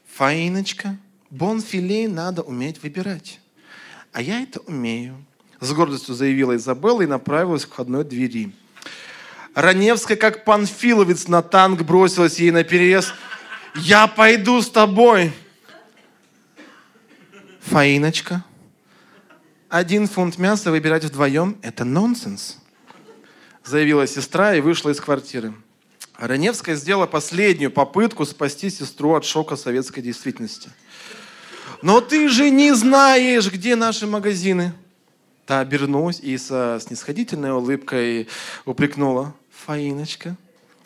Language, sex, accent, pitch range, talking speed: Russian, male, native, 140-205 Hz, 105 wpm